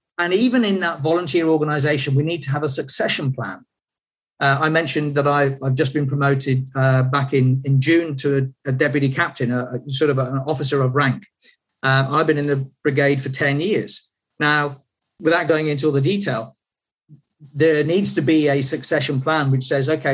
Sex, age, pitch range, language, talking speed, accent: male, 40-59, 135-160 Hz, English, 195 wpm, British